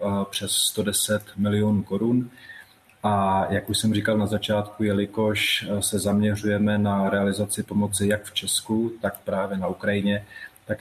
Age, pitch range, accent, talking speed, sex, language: 30-49, 100-105 Hz, native, 140 wpm, male, Czech